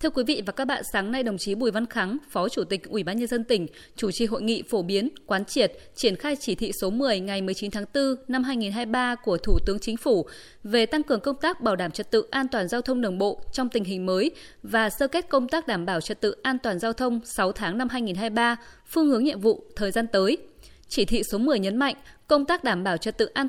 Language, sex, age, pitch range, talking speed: Vietnamese, female, 20-39, 210-270 Hz, 260 wpm